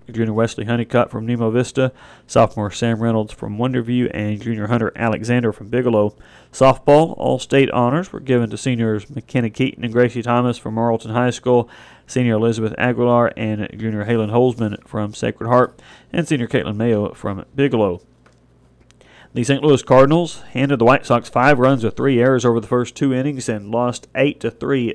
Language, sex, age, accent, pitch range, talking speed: English, male, 40-59, American, 110-125 Hz, 175 wpm